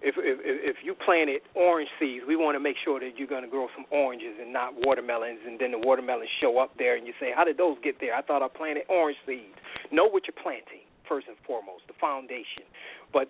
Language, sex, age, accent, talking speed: English, male, 40-59, American, 240 wpm